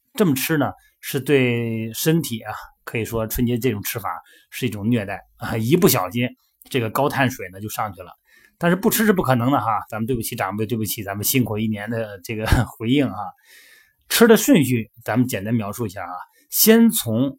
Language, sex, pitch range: Chinese, male, 110-145 Hz